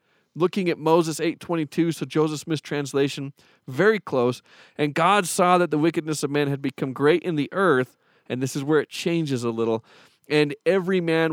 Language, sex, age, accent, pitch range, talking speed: English, male, 40-59, American, 135-170 Hz, 185 wpm